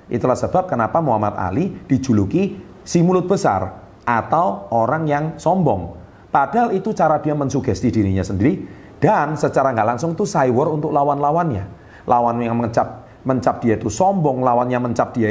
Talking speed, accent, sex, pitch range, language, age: 155 wpm, native, male, 100-130 Hz, Indonesian, 40-59